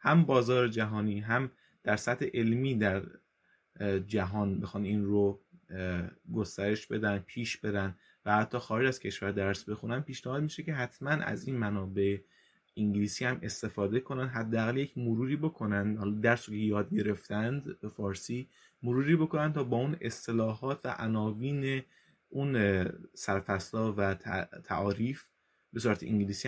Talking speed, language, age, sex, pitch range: 135 wpm, Persian, 20-39, male, 100-125 Hz